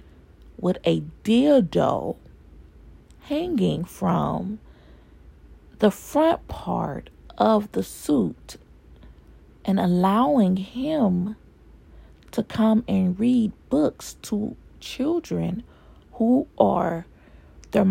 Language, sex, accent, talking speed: English, female, American, 80 wpm